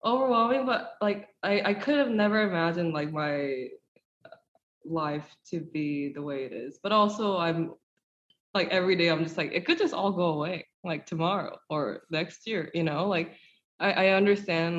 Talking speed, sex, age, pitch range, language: 180 wpm, female, 20-39, 160-190 Hz, English